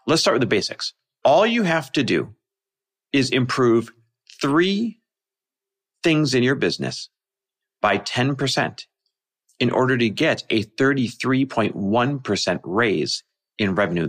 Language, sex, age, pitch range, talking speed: English, male, 40-59, 125-190 Hz, 120 wpm